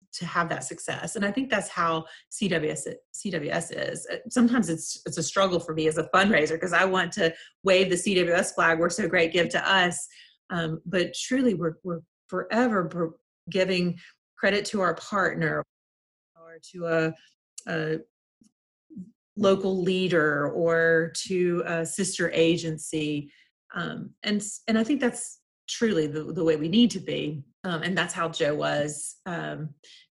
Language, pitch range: English, 160-195 Hz